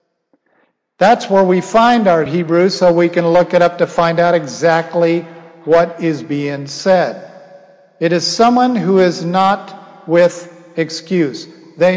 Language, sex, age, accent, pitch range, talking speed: English, male, 50-69, American, 160-190 Hz, 145 wpm